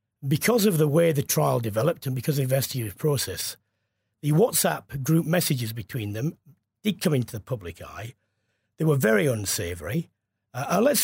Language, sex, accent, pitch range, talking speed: English, male, British, 115-170 Hz, 170 wpm